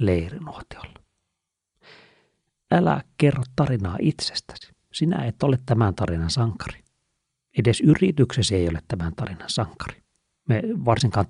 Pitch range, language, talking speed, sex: 95-125 Hz, Finnish, 105 wpm, male